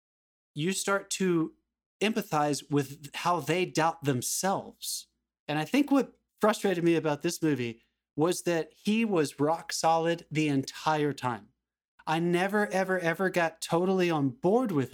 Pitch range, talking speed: 145-185 Hz, 145 wpm